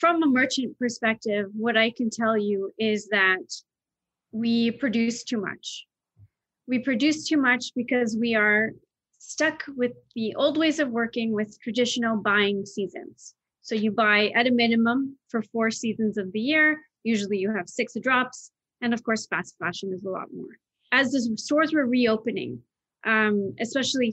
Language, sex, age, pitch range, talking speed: English, female, 30-49, 210-250 Hz, 165 wpm